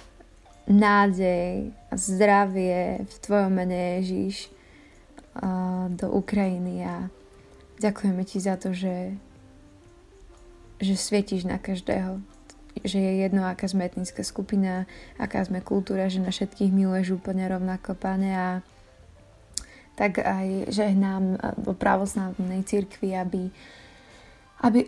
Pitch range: 185-195 Hz